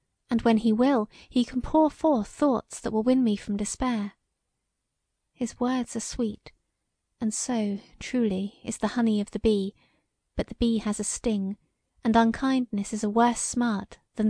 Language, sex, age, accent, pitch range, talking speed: English, female, 30-49, British, 210-245 Hz, 170 wpm